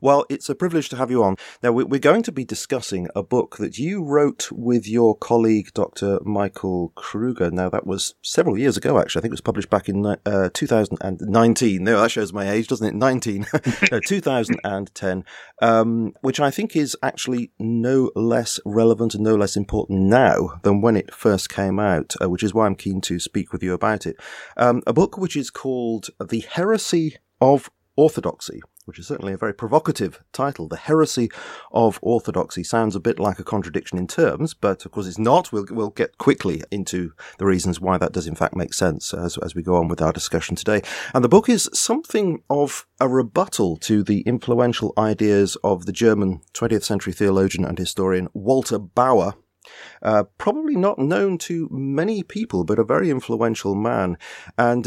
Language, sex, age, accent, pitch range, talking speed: English, male, 30-49, British, 95-130 Hz, 190 wpm